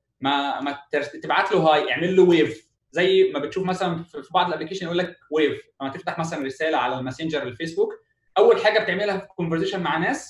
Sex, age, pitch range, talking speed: male, 20-39, 150-205 Hz, 180 wpm